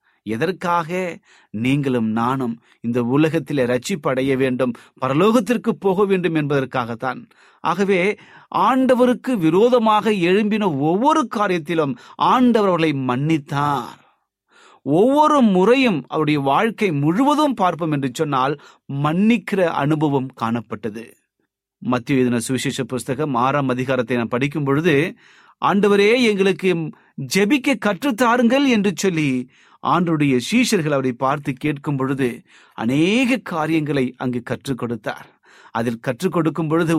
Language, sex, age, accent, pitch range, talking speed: Tamil, male, 30-49, native, 130-200 Hz, 90 wpm